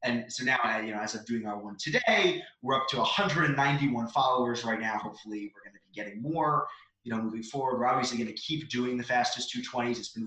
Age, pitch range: 20-39, 120-150 Hz